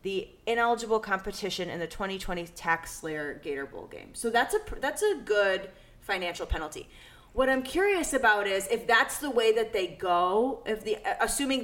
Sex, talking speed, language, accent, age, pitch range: female, 175 wpm, English, American, 20-39, 175-240 Hz